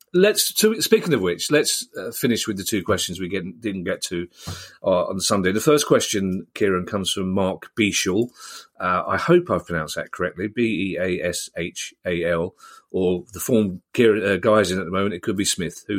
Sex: male